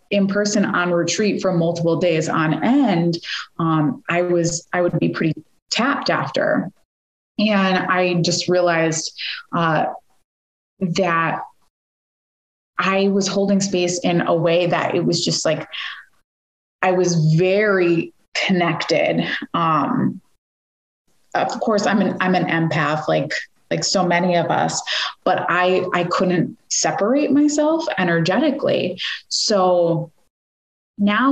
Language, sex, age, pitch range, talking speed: English, female, 20-39, 165-195 Hz, 120 wpm